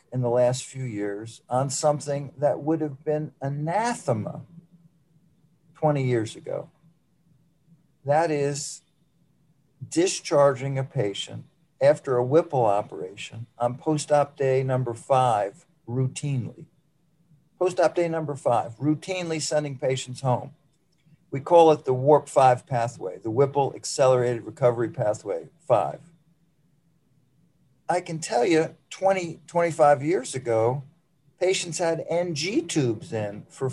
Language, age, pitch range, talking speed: English, 50-69, 135-165 Hz, 115 wpm